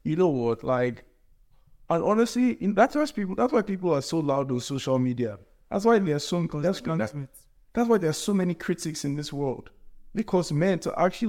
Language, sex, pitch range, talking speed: English, male, 120-150 Hz, 200 wpm